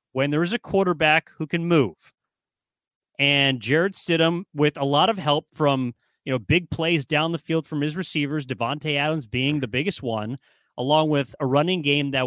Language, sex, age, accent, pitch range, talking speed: English, male, 30-49, American, 135-170 Hz, 190 wpm